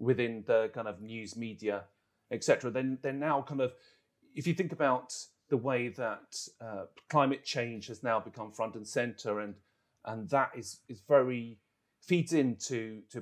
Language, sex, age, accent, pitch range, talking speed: English, male, 30-49, British, 110-140 Hz, 170 wpm